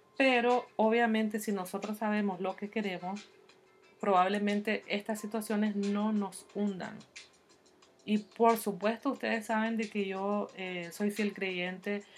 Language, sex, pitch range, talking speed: Spanish, female, 190-230 Hz, 130 wpm